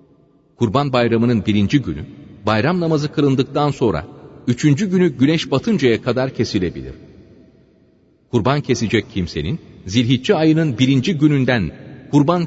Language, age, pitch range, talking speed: Turkish, 40-59, 110-165 Hz, 105 wpm